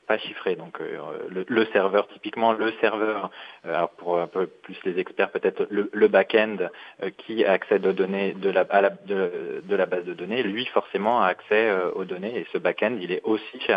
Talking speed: 200 wpm